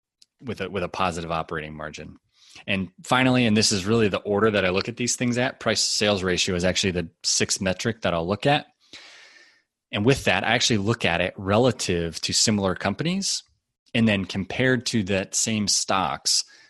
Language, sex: English, male